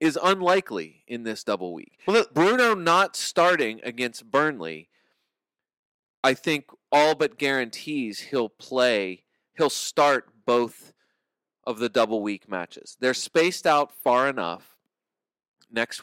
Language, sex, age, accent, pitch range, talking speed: English, male, 30-49, American, 105-150 Hz, 125 wpm